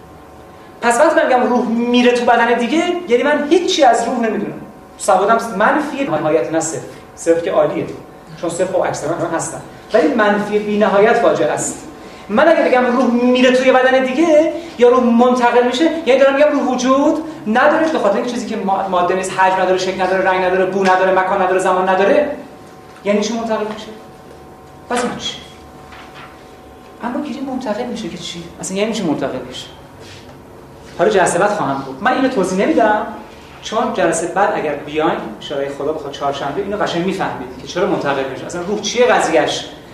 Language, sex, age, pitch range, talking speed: Persian, male, 30-49, 175-250 Hz, 180 wpm